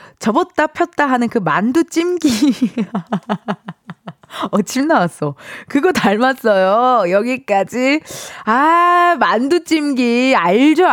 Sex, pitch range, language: female, 200-315 Hz, Korean